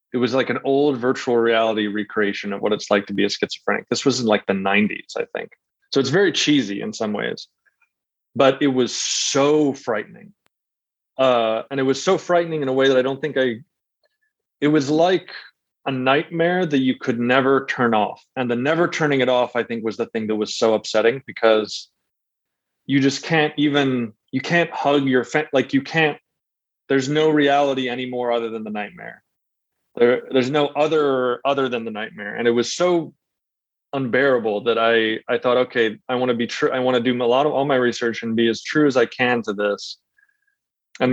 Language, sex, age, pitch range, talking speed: English, male, 20-39, 115-140 Hz, 205 wpm